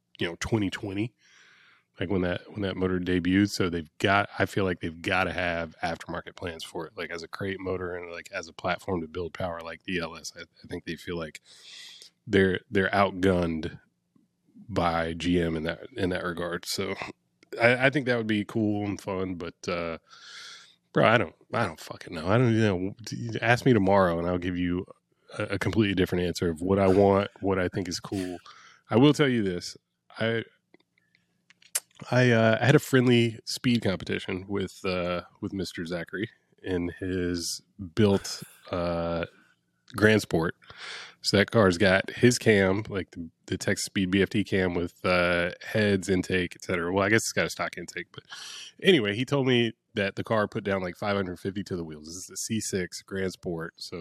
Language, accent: English, American